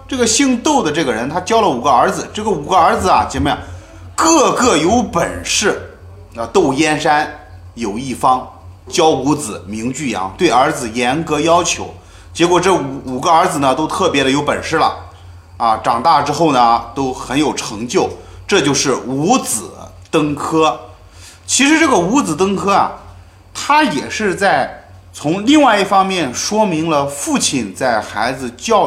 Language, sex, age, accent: Chinese, male, 30-49, native